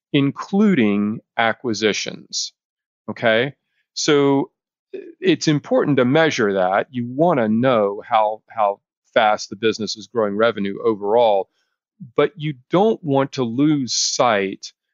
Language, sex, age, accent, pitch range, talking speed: English, male, 40-59, American, 105-135 Hz, 115 wpm